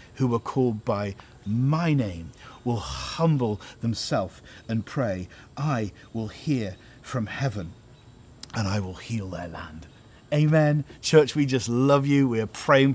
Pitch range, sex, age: 110-140 Hz, male, 50-69